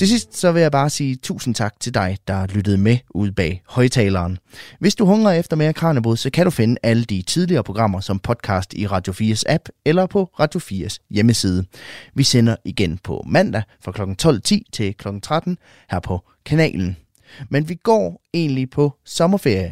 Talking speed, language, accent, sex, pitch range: 190 wpm, Danish, native, male, 100-150 Hz